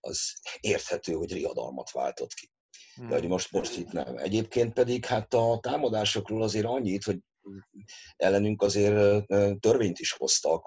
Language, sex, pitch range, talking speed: Hungarian, male, 90-120 Hz, 135 wpm